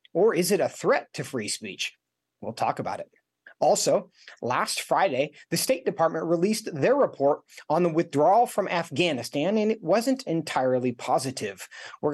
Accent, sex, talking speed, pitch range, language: American, male, 160 wpm, 135-220 Hz, English